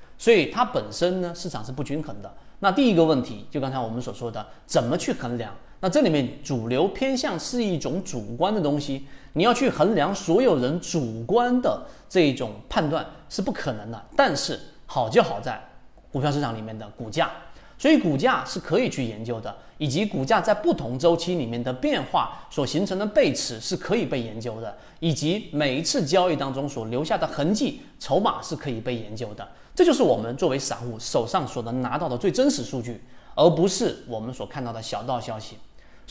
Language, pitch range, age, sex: Chinese, 120-180 Hz, 30-49, male